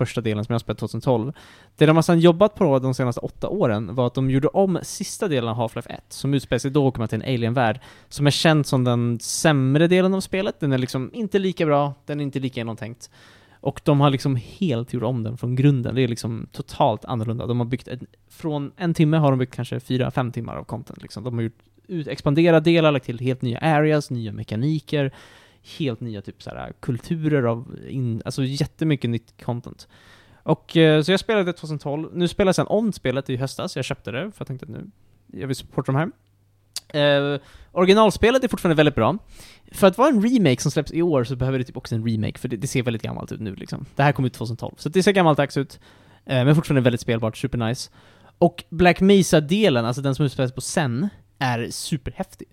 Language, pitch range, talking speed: Swedish, 115-155 Hz, 225 wpm